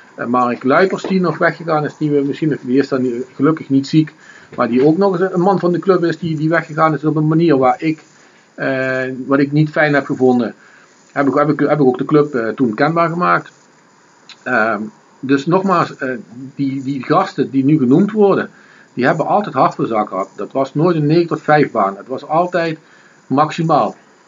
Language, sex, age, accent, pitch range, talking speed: Dutch, male, 50-69, Dutch, 130-165 Hz, 210 wpm